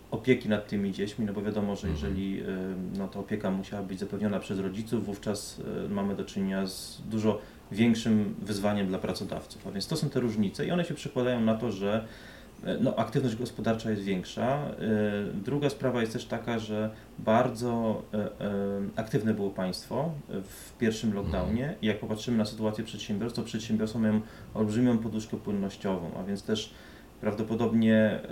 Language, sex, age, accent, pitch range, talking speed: Polish, male, 30-49, native, 100-115 Hz, 155 wpm